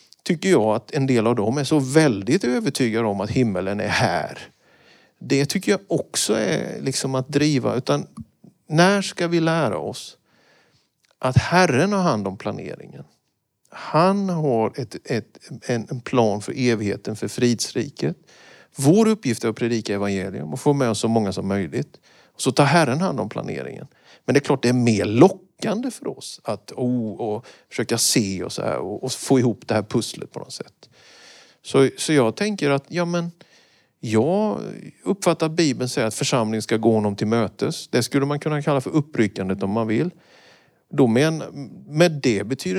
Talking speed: 180 wpm